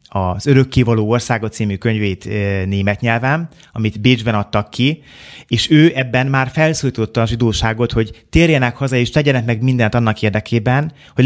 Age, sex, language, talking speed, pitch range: 30-49, male, Hungarian, 150 wpm, 110-130 Hz